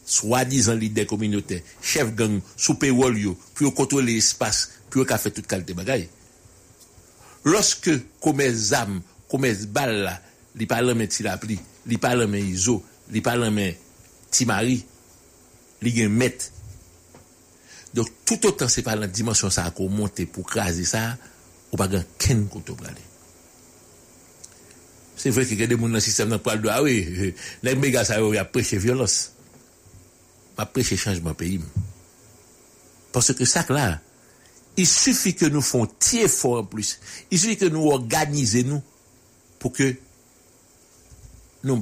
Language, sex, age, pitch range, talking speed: English, male, 60-79, 95-125 Hz, 130 wpm